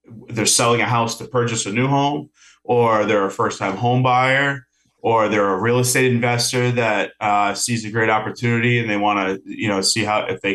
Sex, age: male, 30-49